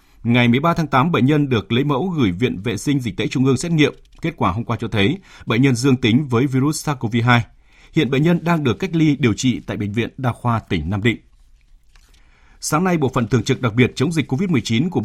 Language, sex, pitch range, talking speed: Vietnamese, male, 110-145 Hz, 245 wpm